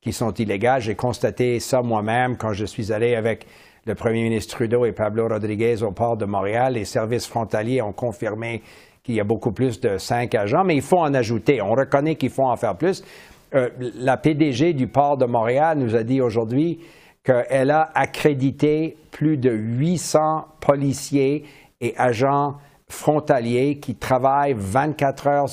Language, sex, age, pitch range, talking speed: French, male, 60-79, 120-140 Hz, 170 wpm